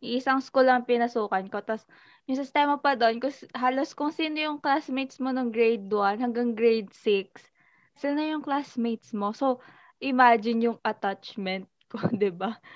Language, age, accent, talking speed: Filipino, 20-39, native, 155 wpm